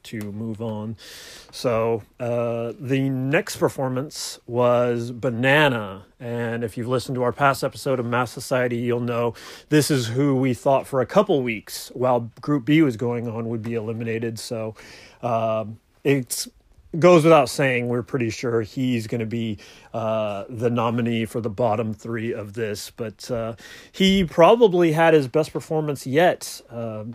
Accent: American